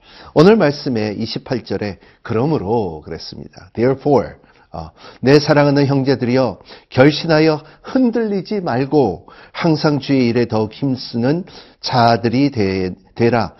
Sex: male